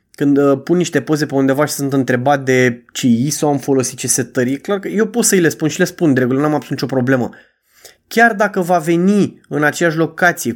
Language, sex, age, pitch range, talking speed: Romanian, male, 20-39, 140-200 Hz, 220 wpm